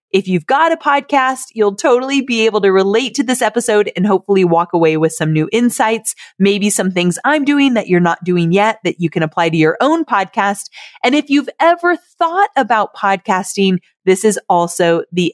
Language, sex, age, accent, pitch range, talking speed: English, female, 30-49, American, 180-275 Hz, 200 wpm